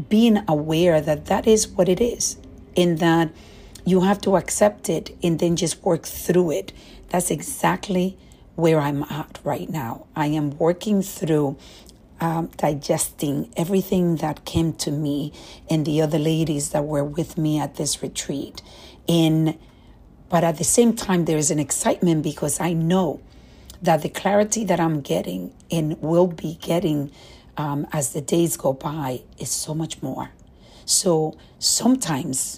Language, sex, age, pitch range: English, female, 50-69, 150-185 Hz